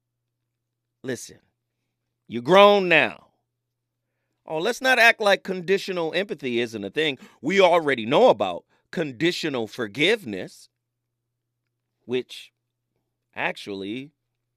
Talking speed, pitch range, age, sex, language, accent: 90 wpm, 120-150 Hz, 30-49, male, English, American